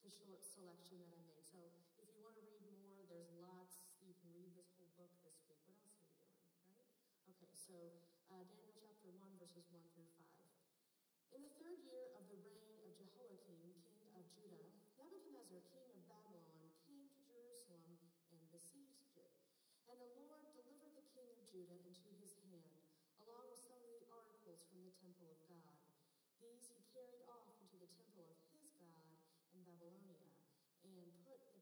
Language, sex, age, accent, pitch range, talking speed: English, female, 40-59, American, 175-250 Hz, 175 wpm